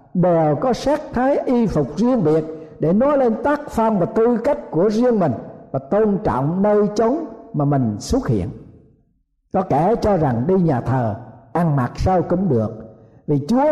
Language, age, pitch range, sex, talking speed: Vietnamese, 60-79, 150-225 Hz, male, 185 wpm